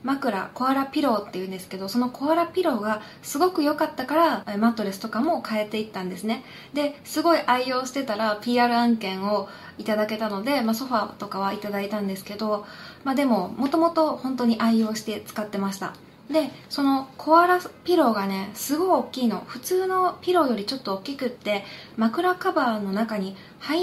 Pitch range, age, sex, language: 205-290 Hz, 20-39, female, Japanese